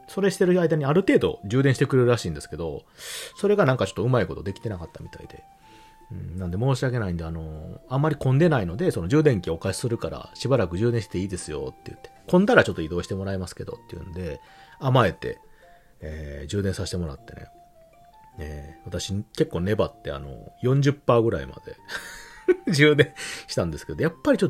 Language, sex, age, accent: Japanese, male, 40-59, native